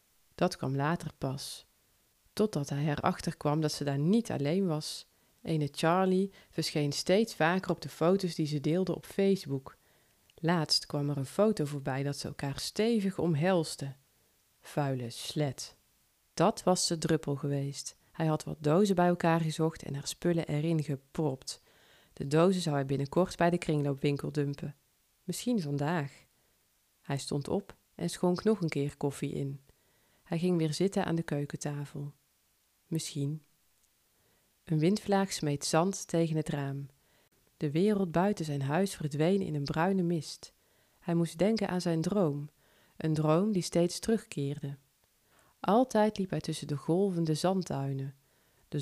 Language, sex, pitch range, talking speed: Dutch, female, 145-180 Hz, 150 wpm